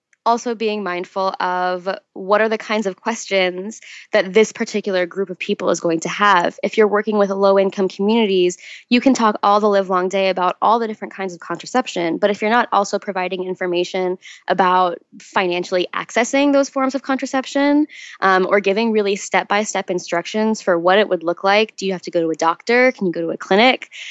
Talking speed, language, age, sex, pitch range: 200 wpm, English, 10-29, female, 185-225 Hz